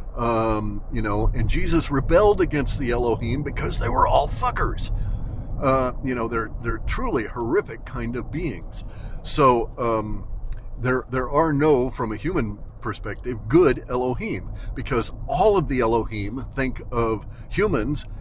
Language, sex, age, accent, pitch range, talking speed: English, male, 40-59, American, 110-135 Hz, 145 wpm